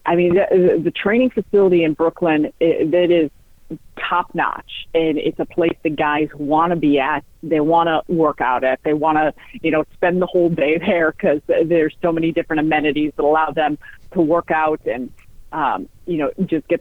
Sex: female